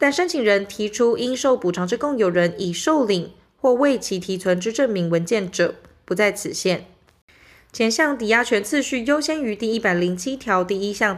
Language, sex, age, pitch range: Chinese, female, 20-39, 185-240 Hz